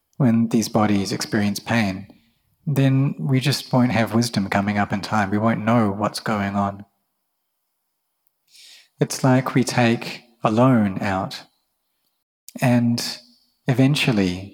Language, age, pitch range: English, 30-49, 105-130 Hz